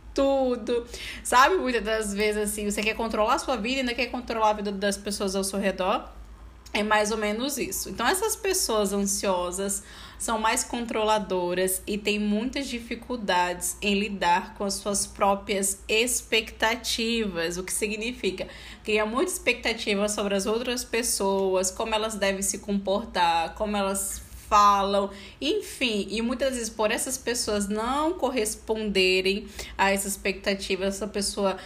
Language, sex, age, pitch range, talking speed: Portuguese, female, 10-29, 195-230 Hz, 150 wpm